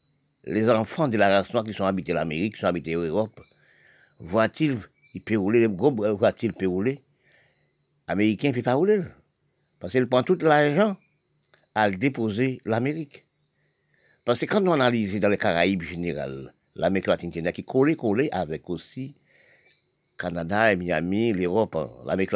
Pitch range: 90-130 Hz